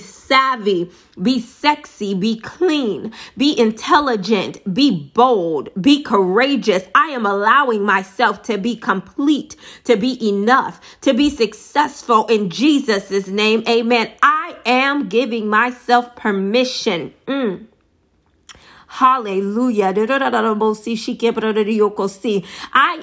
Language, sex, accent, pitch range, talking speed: English, female, American, 205-260 Hz, 95 wpm